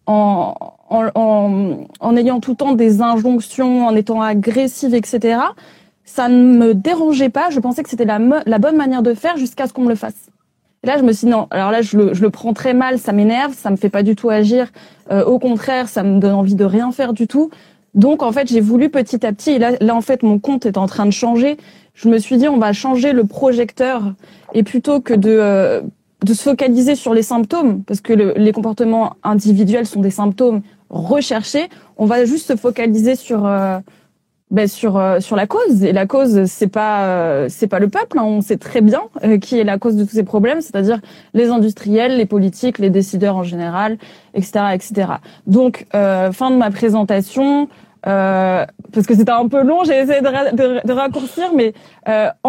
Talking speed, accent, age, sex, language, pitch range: 220 wpm, French, 20-39, female, French, 205-255 Hz